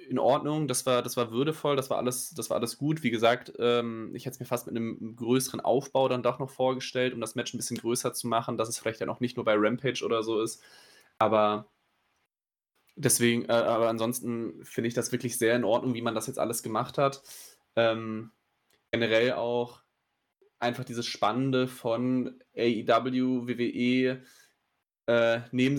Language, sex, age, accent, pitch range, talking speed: German, male, 10-29, German, 115-130 Hz, 175 wpm